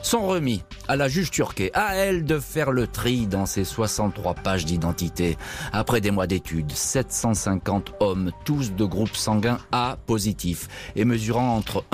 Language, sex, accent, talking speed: French, male, French, 160 wpm